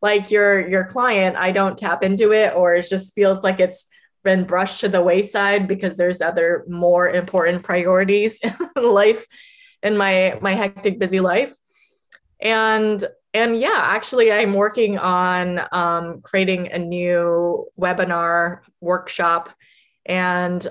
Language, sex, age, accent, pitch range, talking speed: English, female, 20-39, American, 180-220 Hz, 140 wpm